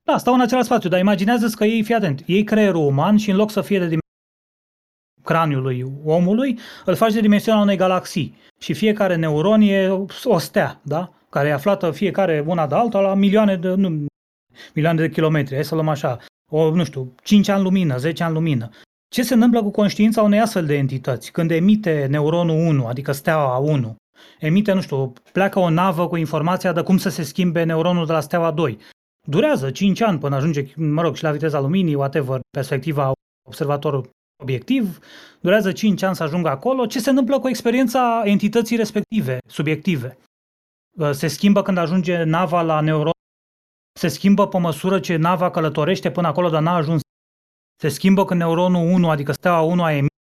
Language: Romanian